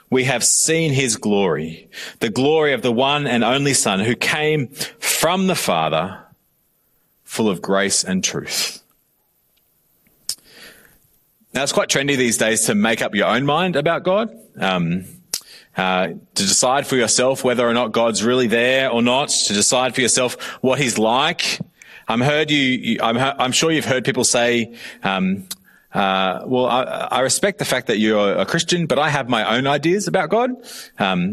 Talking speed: 175 wpm